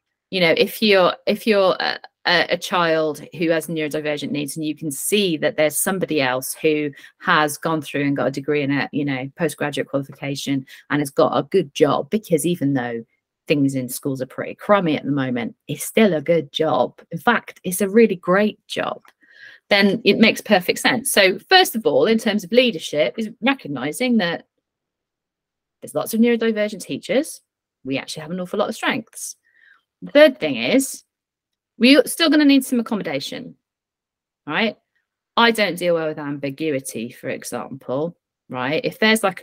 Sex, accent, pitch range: female, British, 145-210 Hz